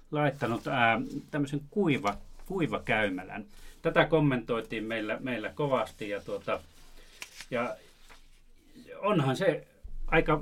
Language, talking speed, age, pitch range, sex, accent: Finnish, 80 wpm, 30-49, 115-160 Hz, male, native